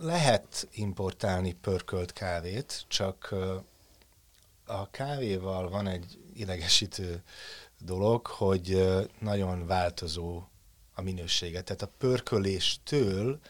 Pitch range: 90-100 Hz